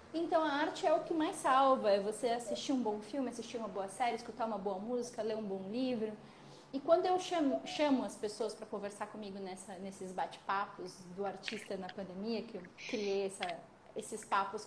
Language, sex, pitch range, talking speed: Portuguese, female, 215-275 Hz, 200 wpm